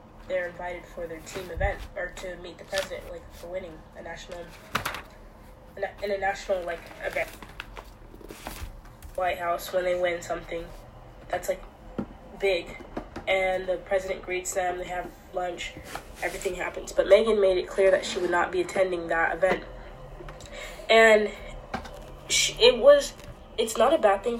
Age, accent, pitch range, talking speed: 20-39, American, 175-200 Hz, 150 wpm